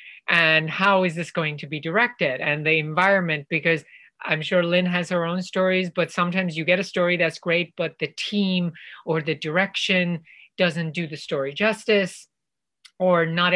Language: English